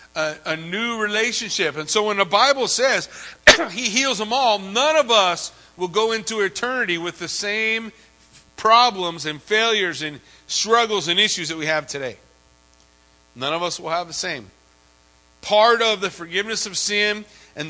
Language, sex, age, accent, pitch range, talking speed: English, male, 40-59, American, 160-220 Hz, 165 wpm